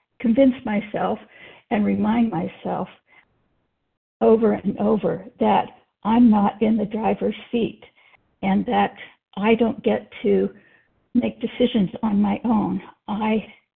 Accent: American